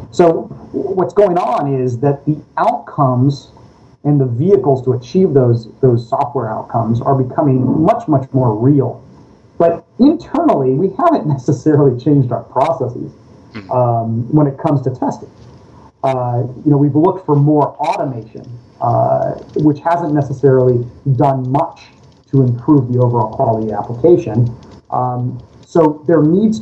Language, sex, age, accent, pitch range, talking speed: English, male, 30-49, American, 120-150 Hz, 140 wpm